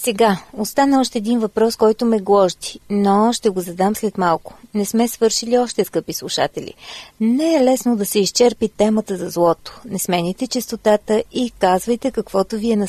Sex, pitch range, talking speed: female, 190-240 Hz, 175 wpm